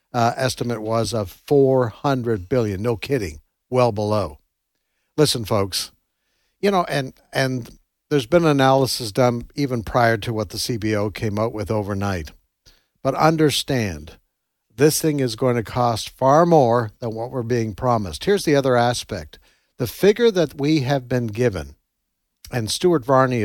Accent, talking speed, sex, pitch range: American, 150 wpm, male, 115-155 Hz